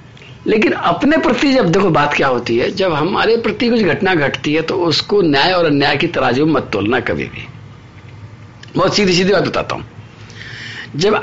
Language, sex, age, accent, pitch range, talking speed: Hindi, male, 50-69, native, 125-205 Hz, 180 wpm